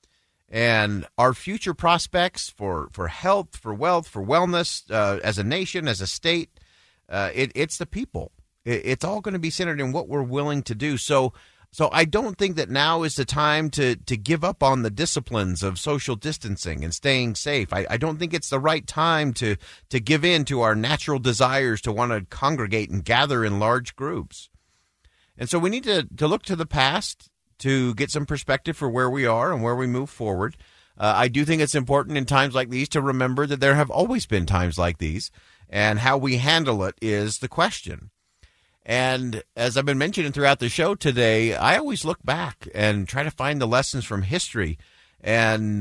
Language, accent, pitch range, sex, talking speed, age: English, American, 105-150 Hz, male, 205 wpm, 40-59